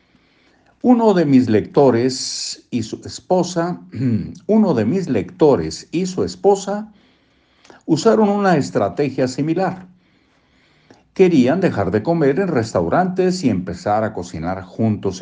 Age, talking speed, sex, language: 60-79, 115 wpm, male, Spanish